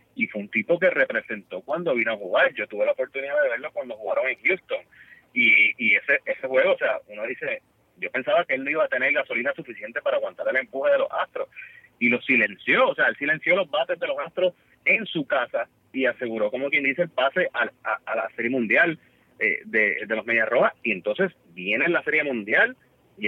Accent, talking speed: Venezuelan, 225 wpm